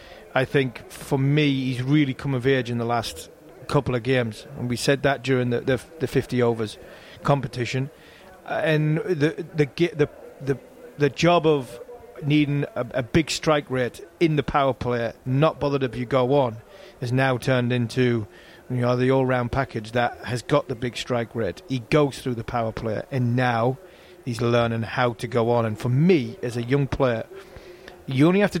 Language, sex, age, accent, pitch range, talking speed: English, male, 30-49, British, 125-150 Hz, 195 wpm